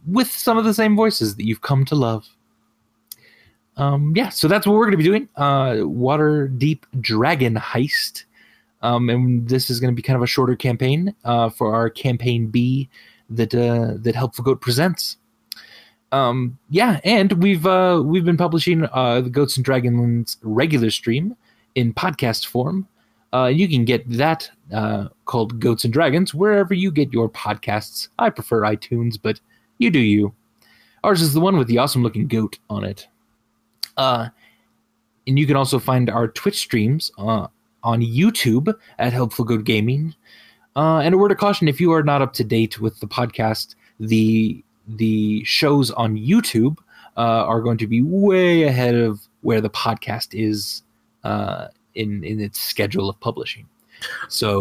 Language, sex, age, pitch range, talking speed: English, male, 20-39, 115-155 Hz, 170 wpm